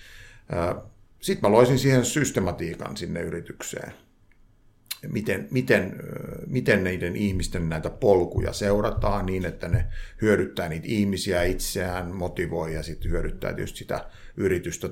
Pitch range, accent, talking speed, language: 85-105 Hz, native, 115 wpm, Finnish